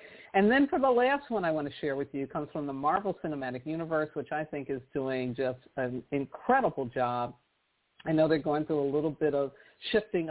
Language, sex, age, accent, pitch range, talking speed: English, female, 50-69, American, 135-170 Hz, 215 wpm